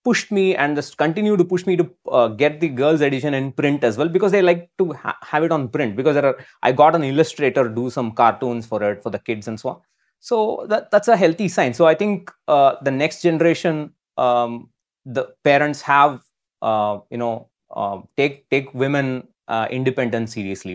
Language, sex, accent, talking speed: English, male, Indian, 210 wpm